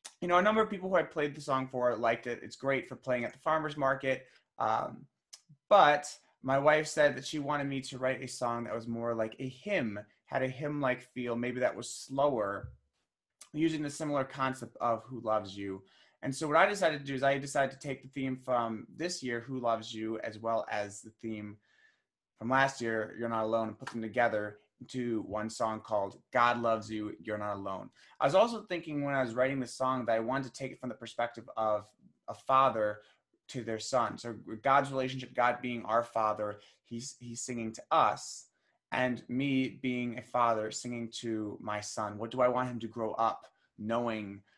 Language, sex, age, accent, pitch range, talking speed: English, male, 20-39, American, 110-135 Hz, 215 wpm